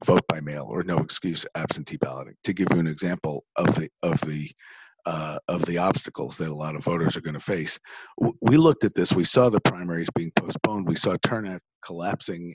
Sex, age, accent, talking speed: male, 50-69, American, 210 wpm